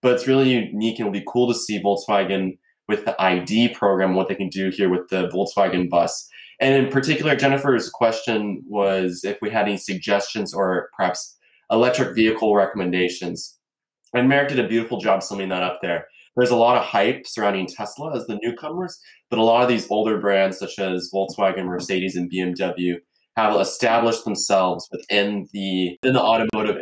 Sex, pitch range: male, 95-115 Hz